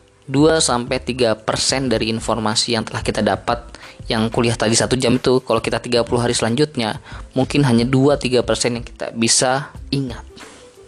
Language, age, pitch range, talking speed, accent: Indonesian, 20-39, 110-130 Hz, 160 wpm, native